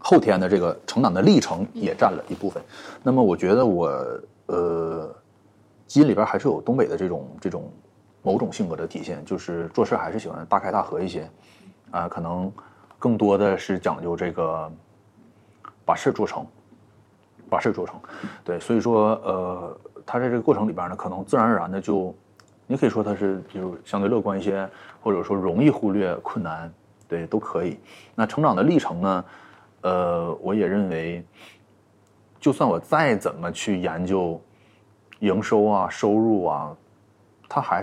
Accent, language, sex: native, Chinese, male